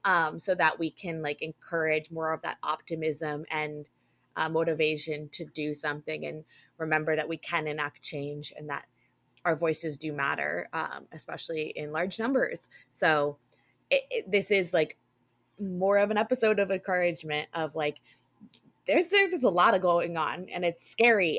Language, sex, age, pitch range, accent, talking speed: English, female, 20-39, 155-180 Hz, American, 165 wpm